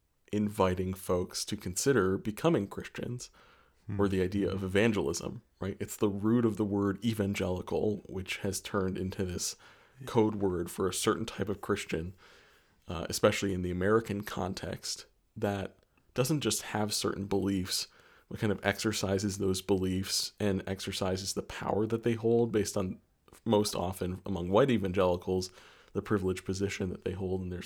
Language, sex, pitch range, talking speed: English, male, 95-105 Hz, 155 wpm